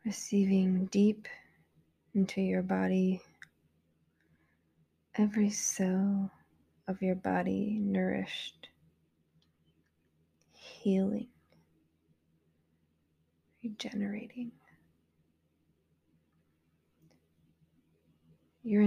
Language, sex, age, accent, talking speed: English, female, 20-39, American, 45 wpm